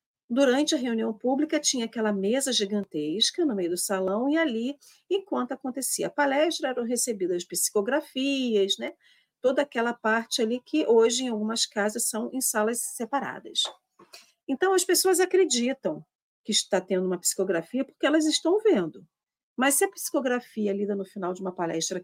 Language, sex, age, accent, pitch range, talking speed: Portuguese, female, 50-69, Brazilian, 200-290 Hz, 160 wpm